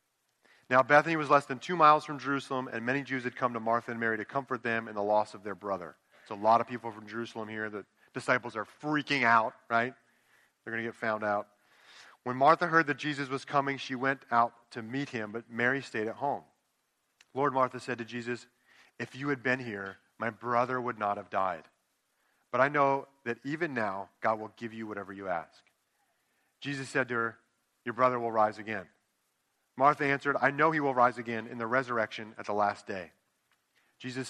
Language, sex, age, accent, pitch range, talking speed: English, male, 40-59, American, 110-135 Hz, 210 wpm